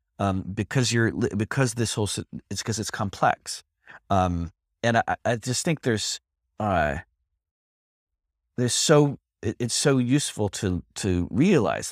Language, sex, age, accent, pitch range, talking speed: English, male, 30-49, American, 80-110 Hz, 135 wpm